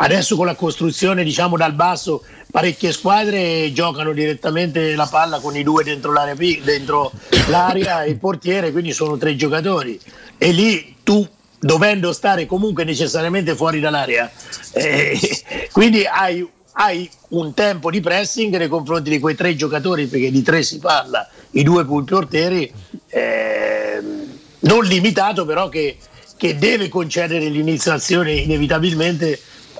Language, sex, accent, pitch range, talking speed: Italian, male, native, 150-190 Hz, 140 wpm